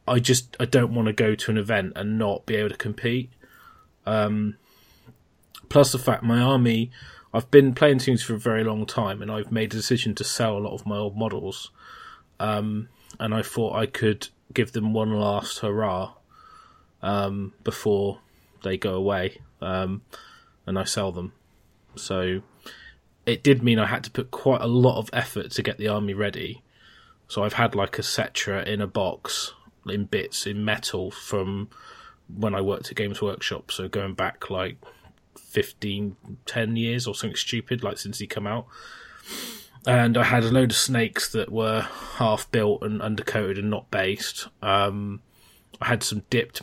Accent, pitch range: British, 100-115 Hz